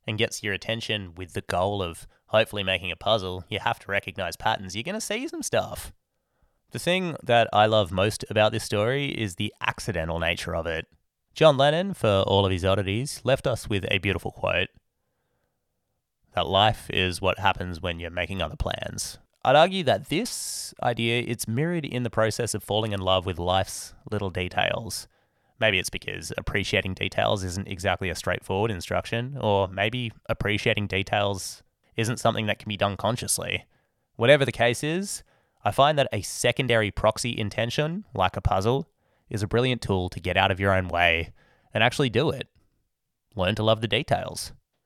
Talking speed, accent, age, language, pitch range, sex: 180 wpm, Australian, 20-39, English, 95-120 Hz, male